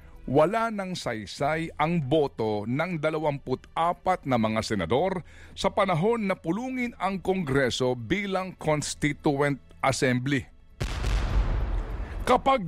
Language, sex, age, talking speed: Filipino, male, 50-69, 95 wpm